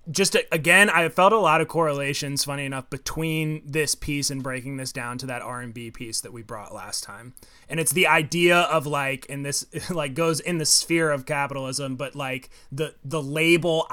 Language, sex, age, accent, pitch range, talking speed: English, male, 20-39, American, 135-160 Hz, 200 wpm